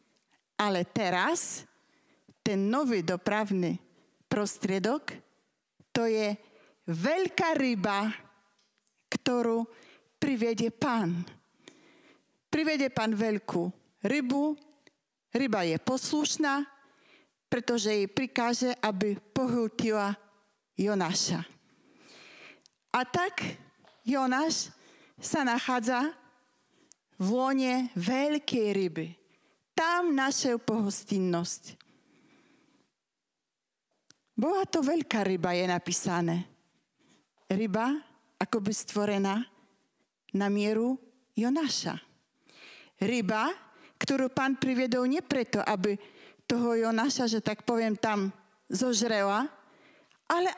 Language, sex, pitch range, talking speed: Slovak, female, 205-280 Hz, 75 wpm